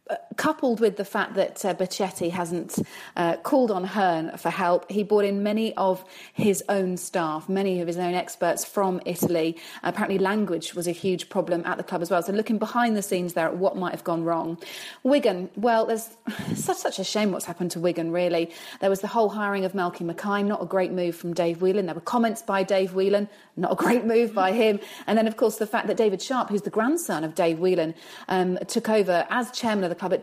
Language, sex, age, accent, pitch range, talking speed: English, female, 30-49, British, 175-210 Hz, 230 wpm